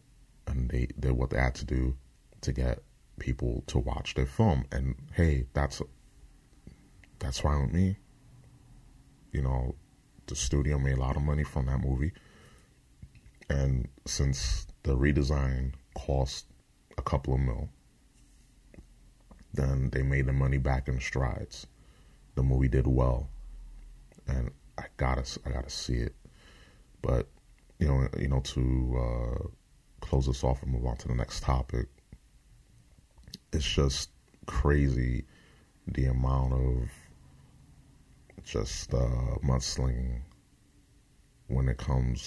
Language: English